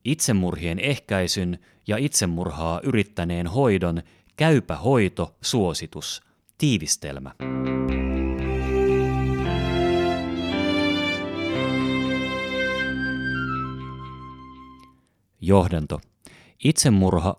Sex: male